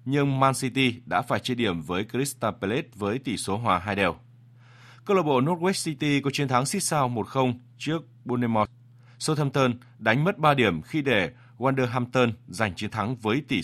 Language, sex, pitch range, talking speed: Vietnamese, male, 100-135 Hz, 185 wpm